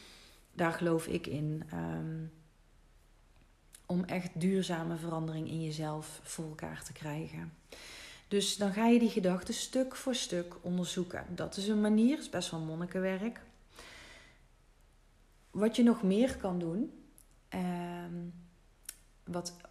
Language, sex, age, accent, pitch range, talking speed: Dutch, female, 40-59, Dutch, 175-205 Hz, 130 wpm